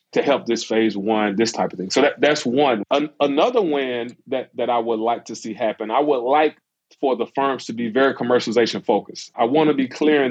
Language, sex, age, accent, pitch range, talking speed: English, male, 30-49, American, 115-145 Hz, 235 wpm